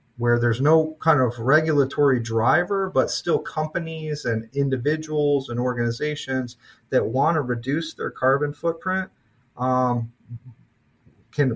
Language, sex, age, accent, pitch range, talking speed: English, male, 30-49, American, 120-140 Hz, 120 wpm